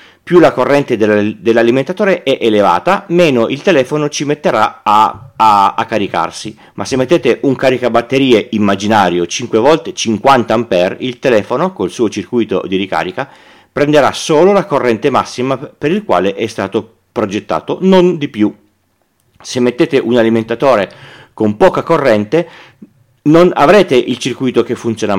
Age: 40-59